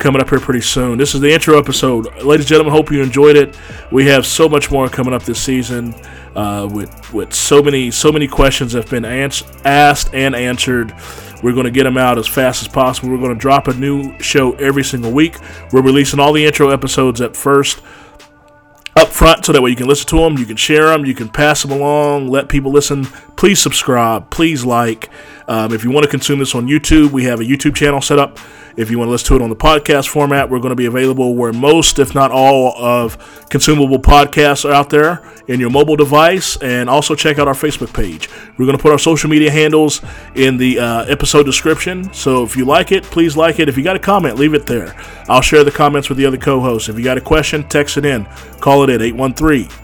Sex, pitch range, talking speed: male, 125-150 Hz, 240 wpm